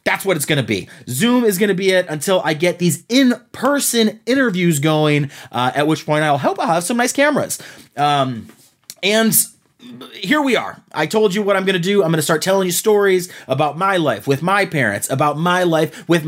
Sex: male